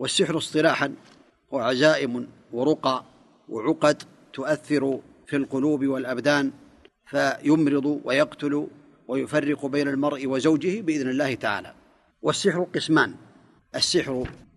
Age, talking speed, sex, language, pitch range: 40-59, 85 wpm, male, Arabic, 135-160 Hz